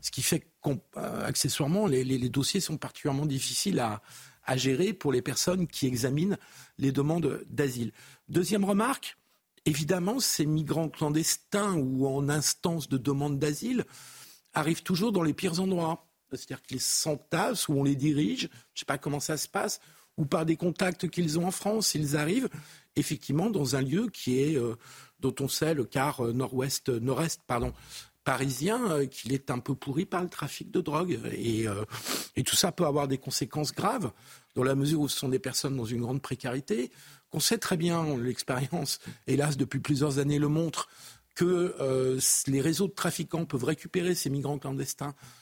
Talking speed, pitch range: 180 wpm, 135-170 Hz